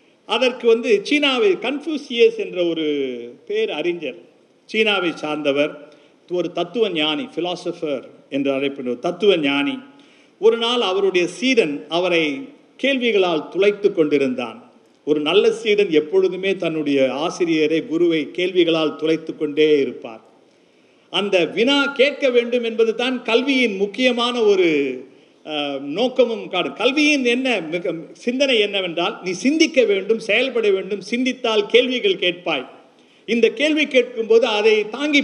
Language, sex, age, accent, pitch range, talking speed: Tamil, male, 50-69, native, 170-260 Hz, 110 wpm